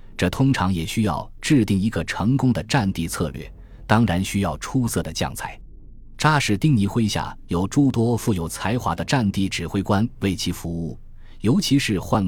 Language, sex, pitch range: Chinese, male, 85-115 Hz